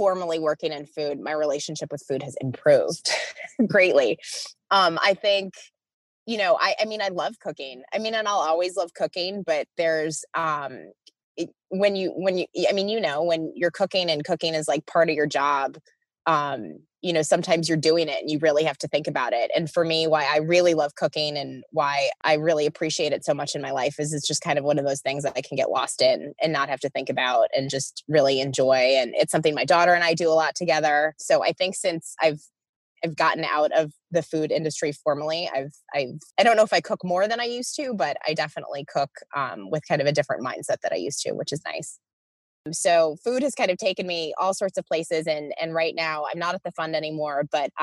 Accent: American